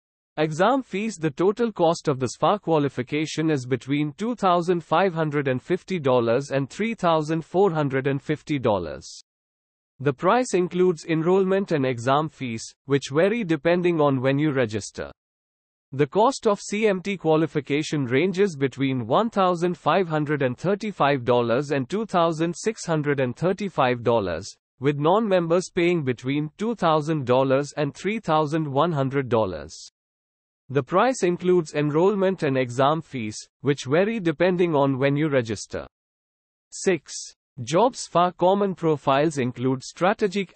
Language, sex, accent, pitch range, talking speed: English, male, Indian, 135-180 Hz, 100 wpm